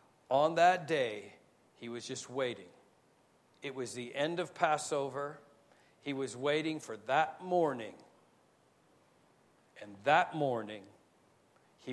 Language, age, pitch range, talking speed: English, 50-69, 125-185 Hz, 115 wpm